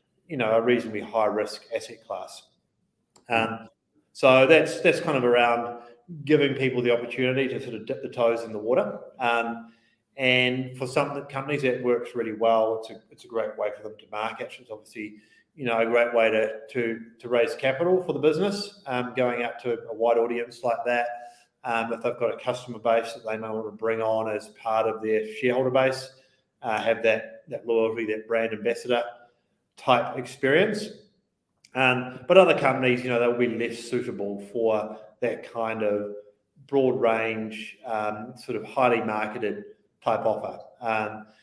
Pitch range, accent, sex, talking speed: 110-125 Hz, Australian, male, 180 wpm